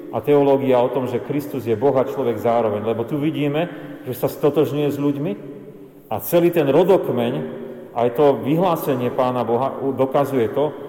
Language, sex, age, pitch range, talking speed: Slovak, male, 40-59, 115-140 Hz, 160 wpm